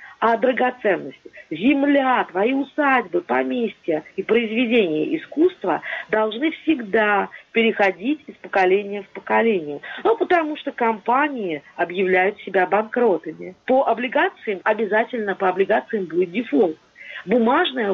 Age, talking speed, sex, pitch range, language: 40-59, 105 wpm, female, 195-260 Hz, Russian